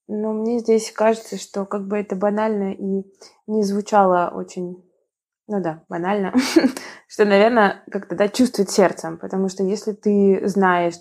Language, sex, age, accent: Russian, female, 20-39, native